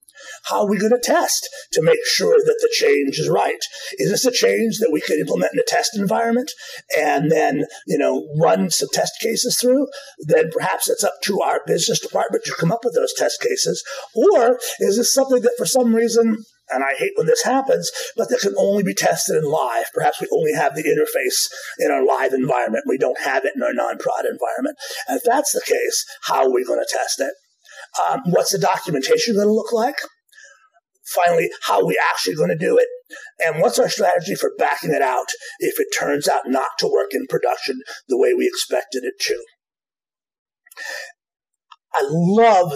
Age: 30-49